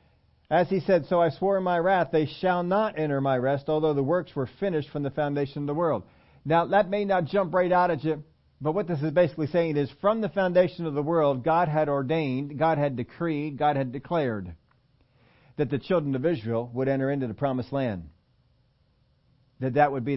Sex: male